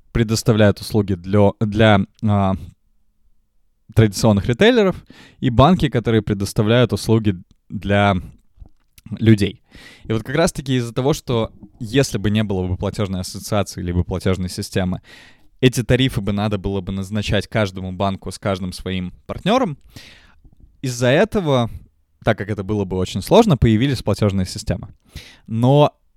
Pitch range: 95-125 Hz